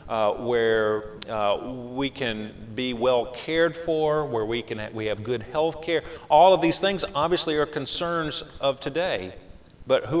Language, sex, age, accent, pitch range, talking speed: English, male, 40-59, American, 105-140 Hz, 170 wpm